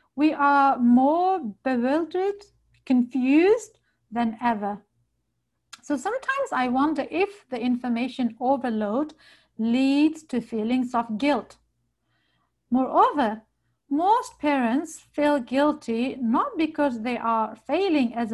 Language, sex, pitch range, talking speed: English, female, 230-290 Hz, 100 wpm